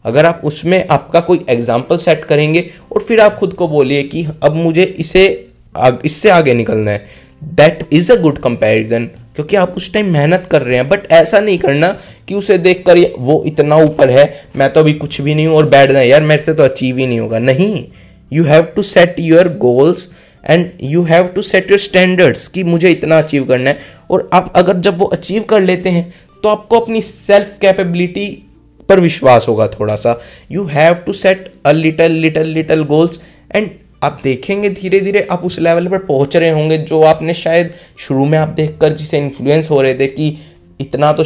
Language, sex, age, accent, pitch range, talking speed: Hindi, male, 20-39, native, 140-180 Hz, 205 wpm